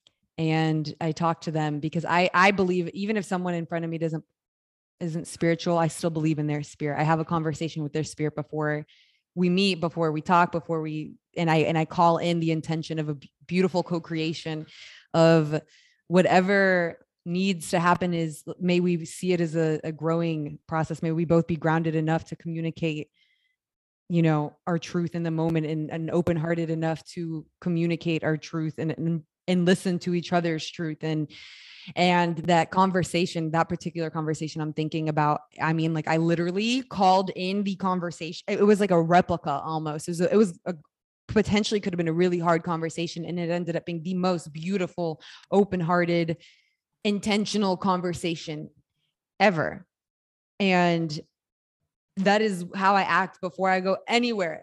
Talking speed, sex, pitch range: 170 wpm, female, 160-180 Hz